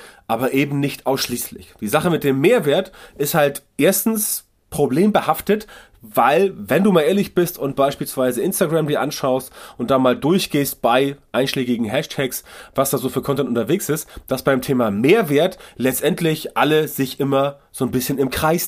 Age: 30-49